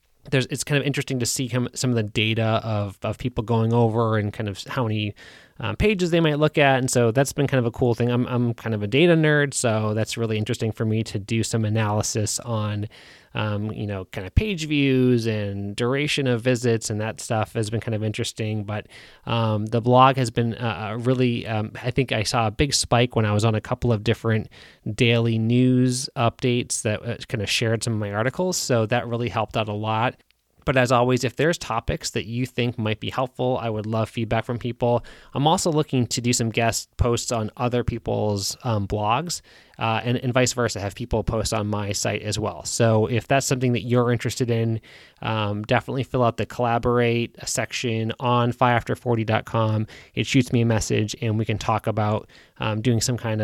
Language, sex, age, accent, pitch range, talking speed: English, male, 20-39, American, 110-125 Hz, 215 wpm